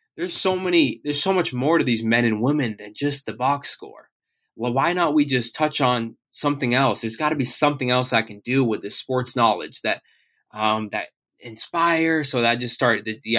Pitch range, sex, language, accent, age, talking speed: 110-135 Hz, male, English, American, 20-39, 225 wpm